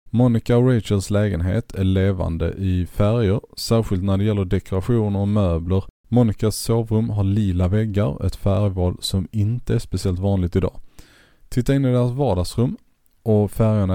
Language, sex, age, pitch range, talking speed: Swedish, male, 20-39, 90-110 Hz, 150 wpm